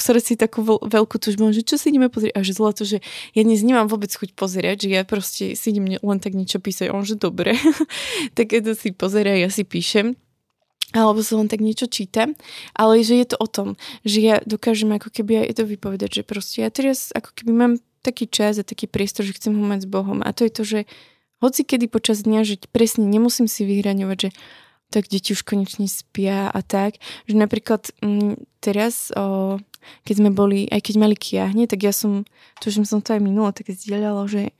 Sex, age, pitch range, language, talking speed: female, 20-39, 200-225 Hz, Slovak, 210 wpm